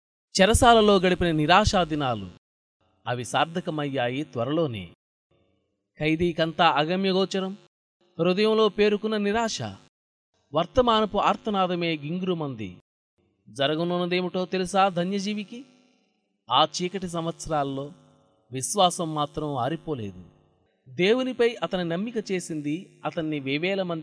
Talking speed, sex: 75 wpm, male